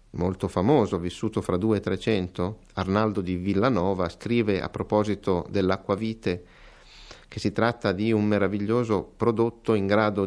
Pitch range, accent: 90-115 Hz, native